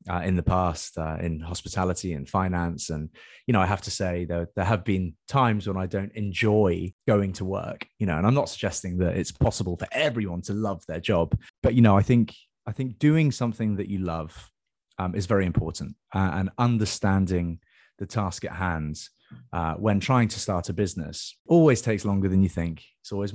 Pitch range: 90-110 Hz